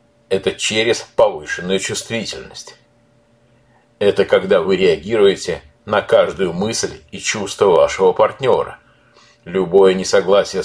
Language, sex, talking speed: Russian, male, 95 wpm